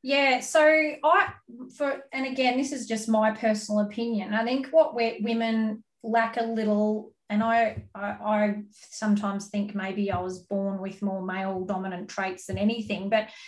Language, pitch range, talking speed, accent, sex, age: English, 200-245 Hz, 170 wpm, Australian, female, 30-49